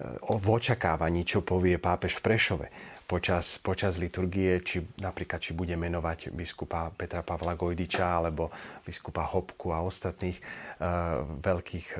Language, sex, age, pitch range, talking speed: Slovak, male, 40-59, 85-110 Hz, 125 wpm